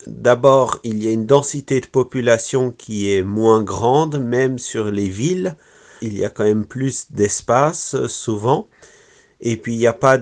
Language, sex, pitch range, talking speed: French, male, 115-140 Hz, 175 wpm